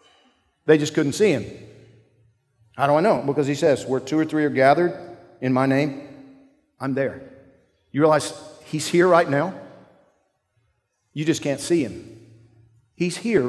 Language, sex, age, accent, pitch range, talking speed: English, male, 50-69, American, 130-175 Hz, 160 wpm